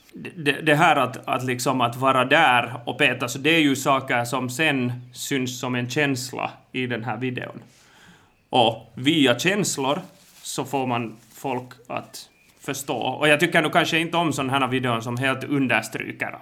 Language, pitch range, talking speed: Swedish, 120-145 Hz, 170 wpm